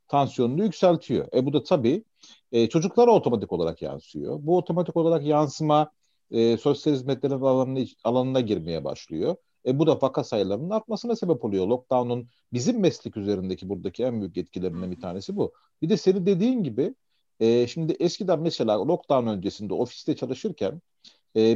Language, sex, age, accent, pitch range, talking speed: Turkish, male, 40-59, native, 115-175 Hz, 155 wpm